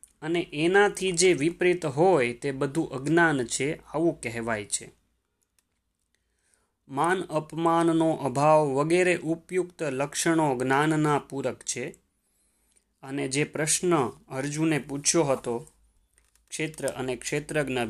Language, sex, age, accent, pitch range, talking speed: Gujarati, male, 20-39, native, 130-170 Hz, 100 wpm